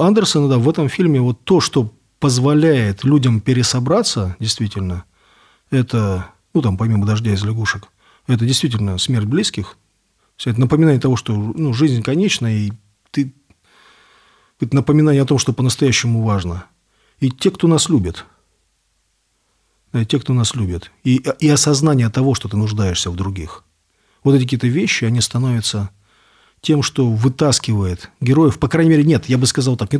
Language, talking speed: Russian, 150 wpm